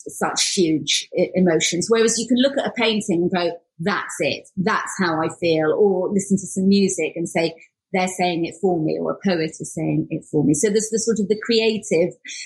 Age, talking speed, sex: 30-49, 215 wpm, female